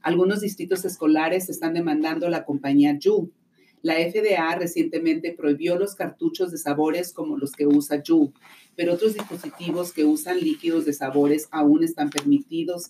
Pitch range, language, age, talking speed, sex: 155-205 Hz, English, 40-59, 150 wpm, female